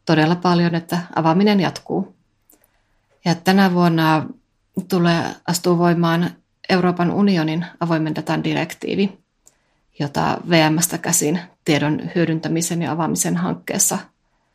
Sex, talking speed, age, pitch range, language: female, 95 wpm, 30-49, 155-175 Hz, Finnish